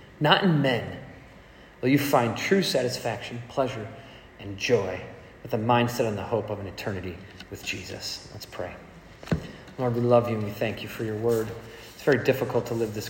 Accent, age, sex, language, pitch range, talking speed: American, 30-49, male, English, 105-130 Hz, 190 wpm